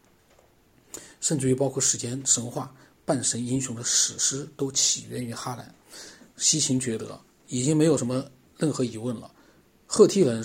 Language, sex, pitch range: Chinese, male, 120-145 Hz